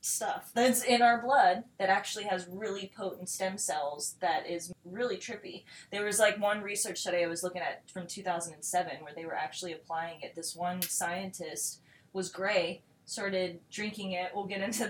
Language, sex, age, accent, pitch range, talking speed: English, female, 20-39, American, 175-220 Hz, 180 wpm